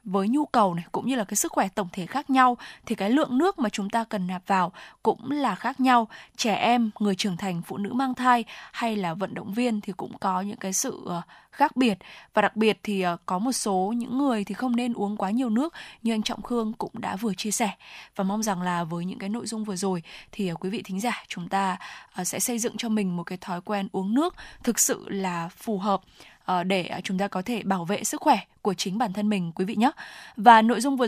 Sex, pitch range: female, 195-245 Hz